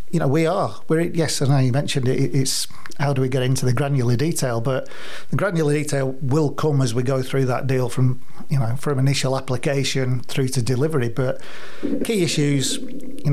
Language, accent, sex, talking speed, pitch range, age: English, British, male, 200 wpm, 130-155 Hz, 40-59